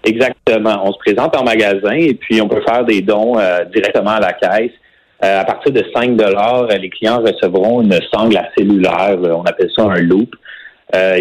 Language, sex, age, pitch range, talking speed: French, male, 30-49, 100-170 Hz, 200 wpm